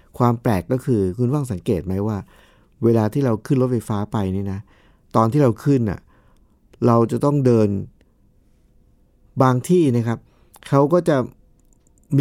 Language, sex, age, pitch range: Thai, male, 60-79, 105-135 Hz